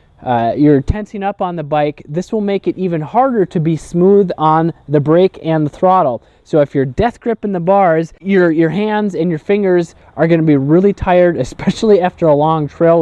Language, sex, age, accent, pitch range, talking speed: English, male, 20-39, American, 145-195 Hz, 210 wpm